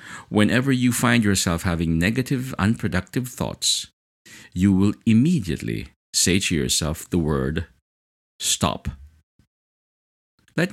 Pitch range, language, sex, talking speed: 75-120 Hz, English, male, 100 wpm